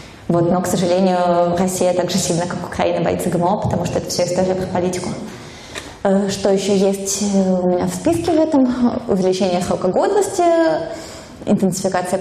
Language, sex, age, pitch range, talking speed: Russian, female, 20-39, 180-210 Hz, 150 wpm